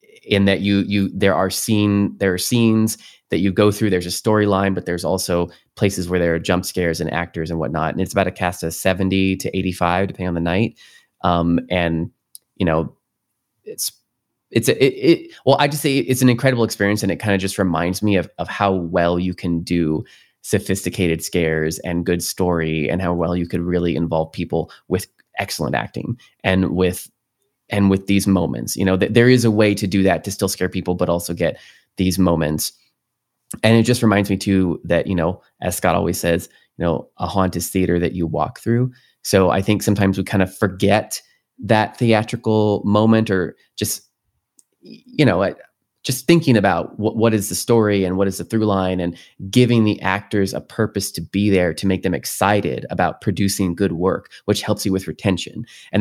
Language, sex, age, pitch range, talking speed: English, male, 20-39, 90-105 Hz, 205 wpm